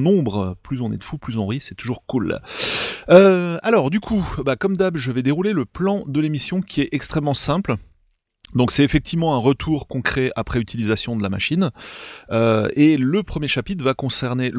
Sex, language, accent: male, French, French